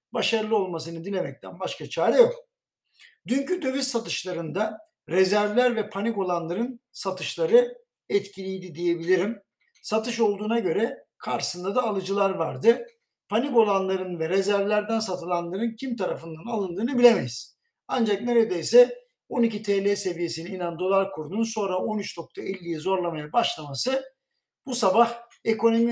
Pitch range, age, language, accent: 185-245 Hz, 60-79, Turkish, native